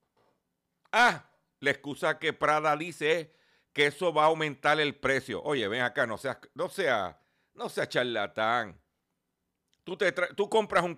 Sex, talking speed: male, 165 wpm